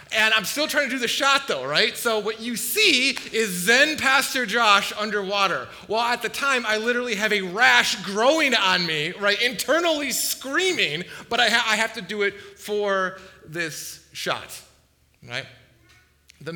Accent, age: American, 30-49